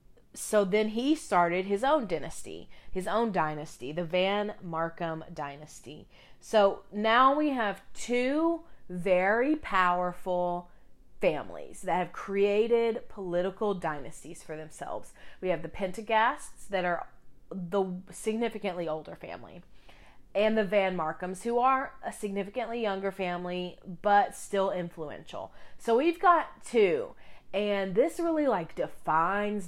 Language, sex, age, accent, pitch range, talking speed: English, female, 30-49, American, 165-210 Hz, 125 wpm